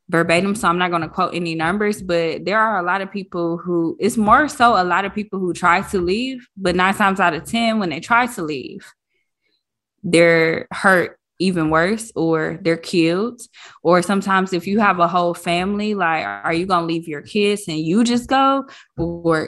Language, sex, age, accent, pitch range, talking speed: English, female, 20-39, American, 165-200 Hz, 205 wpm